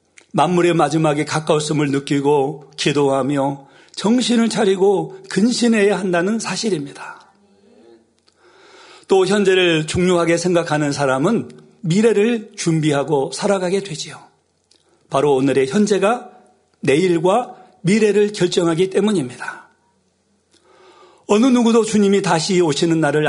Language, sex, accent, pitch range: Korean, male, native, 145-205 Hz